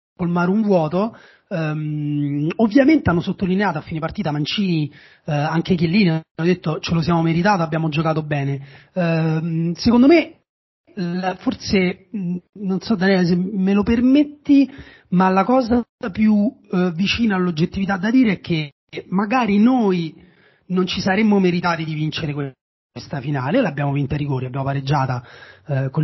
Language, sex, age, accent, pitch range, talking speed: Italian, male, 30-49, native, 150-205 Hz, 150 wpm